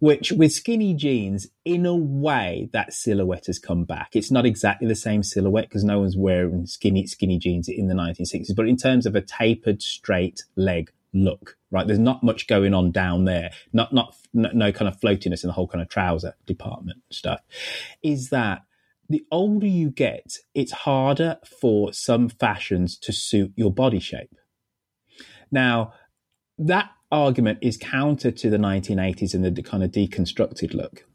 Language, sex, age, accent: English, male, 30-49, British